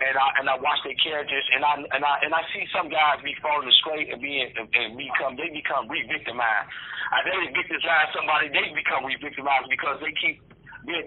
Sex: male